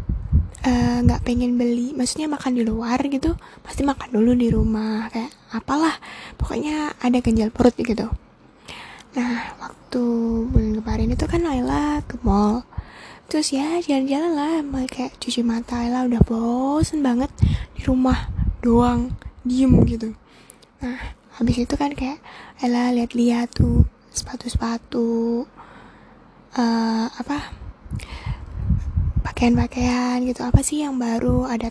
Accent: native